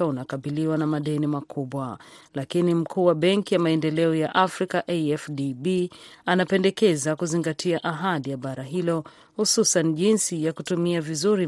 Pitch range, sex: 150-180 Hz, female